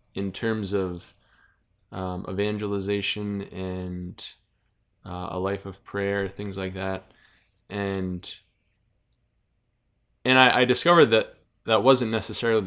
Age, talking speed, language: 20-39, 110 wpm, English